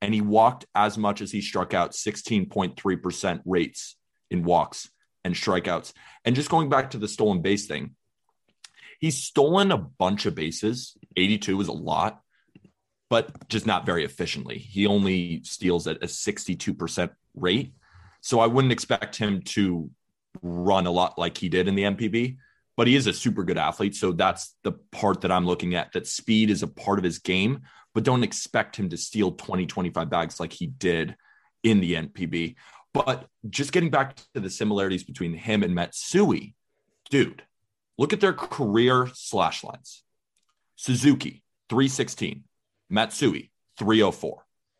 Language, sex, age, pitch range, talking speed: English, male, 30-49, 95-130 Hz, 160 wpm